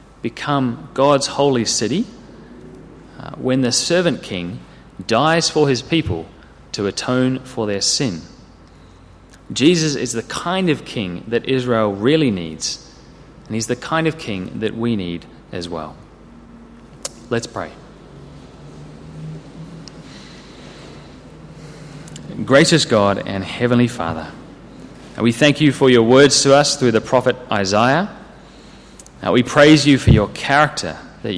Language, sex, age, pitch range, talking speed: English, male, 30-49, 100-135 Hz, 125 wpm